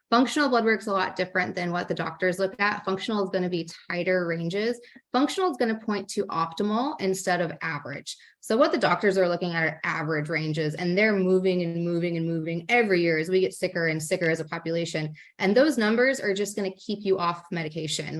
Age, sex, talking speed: 20-39, female, 230 wpm